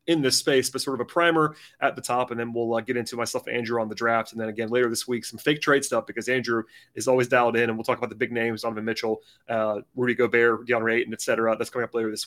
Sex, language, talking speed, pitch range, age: male, English, 295 wpm, 120-145 Hz, 30-49